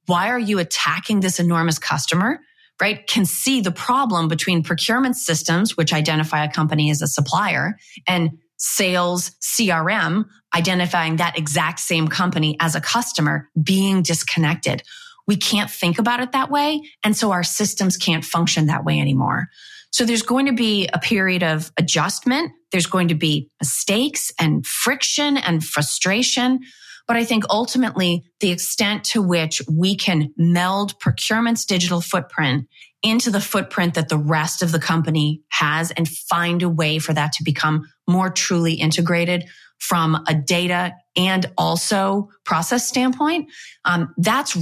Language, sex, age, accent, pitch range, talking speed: English, female, 30-49, American, 160-210 Hz, 150 wpm